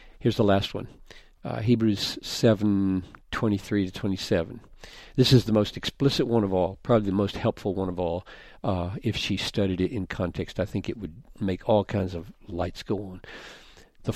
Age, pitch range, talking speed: 50-69, 105-155 Hz, 185 wpm